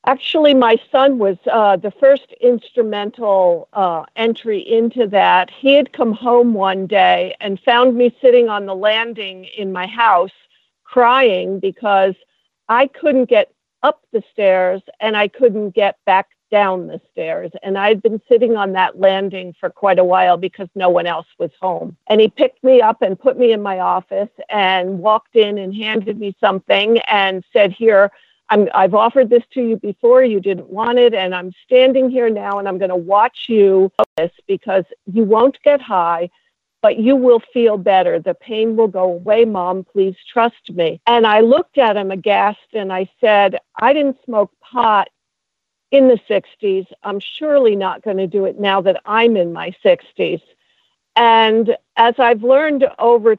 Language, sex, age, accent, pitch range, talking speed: English, female, 50-69, American, 195-240 Hz, 175 wpm